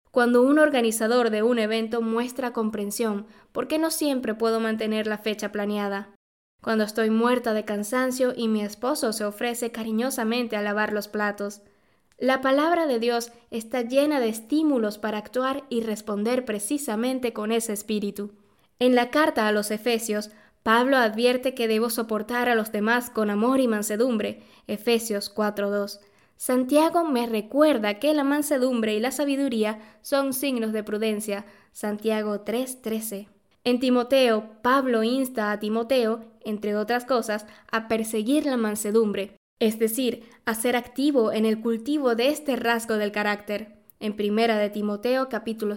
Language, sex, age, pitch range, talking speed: Spanish, female, 10-29, 210-250 Hz, 150 wpm